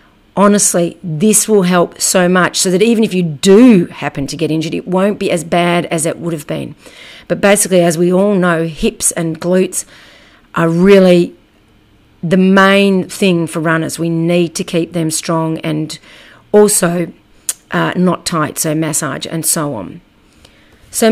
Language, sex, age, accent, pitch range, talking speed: English, female, 40-59, Australian, 165-200 Hz, 170 wpm